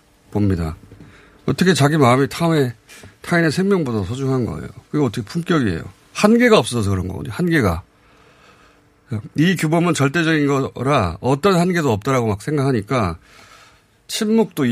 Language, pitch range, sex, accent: Korean, 100-145 Hz, male, native